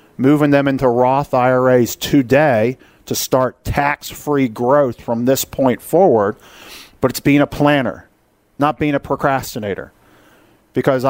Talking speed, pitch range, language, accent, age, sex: 130 wpm, 120-150 Hz, English, American, 50-69, male